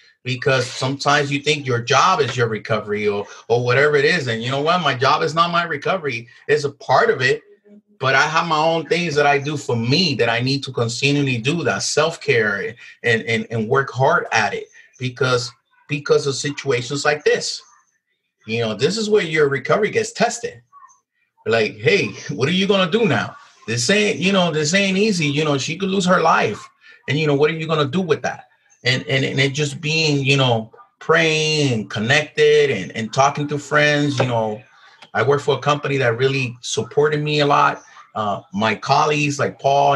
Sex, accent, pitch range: male, American, 125-185 Hz